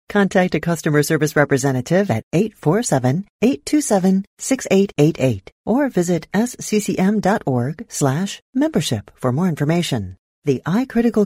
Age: 40-59